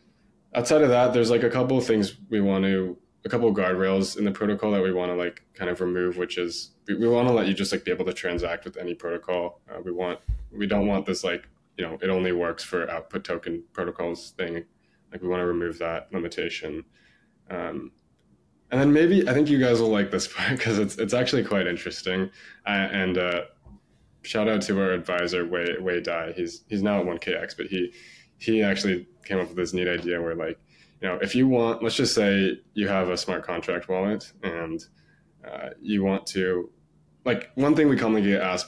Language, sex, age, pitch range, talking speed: English, male, 20-39, 90-115 Hz, 220 wpm